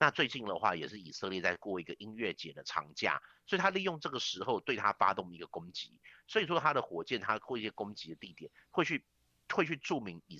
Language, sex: Chinese, male